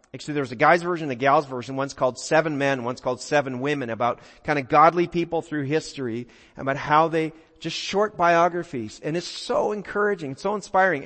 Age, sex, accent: 40-59, male, American